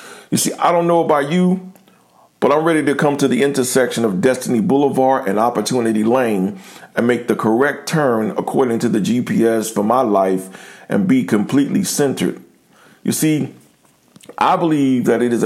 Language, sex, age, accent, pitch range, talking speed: English, male, 50-69, American, 110-135 Hz, 170 wpm